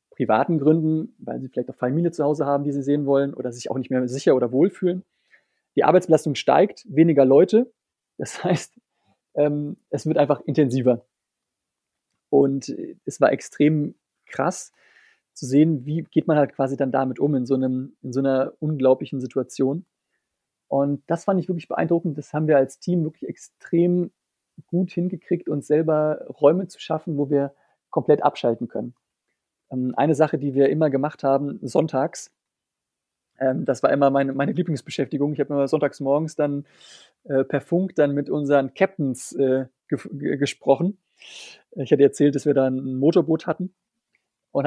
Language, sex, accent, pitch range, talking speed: German, male, German, 135-165 Hz, 160 wpm